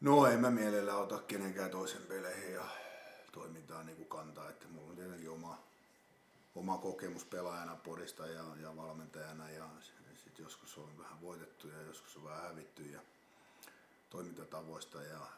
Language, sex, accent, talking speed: Finnish, male, native, 140 wpm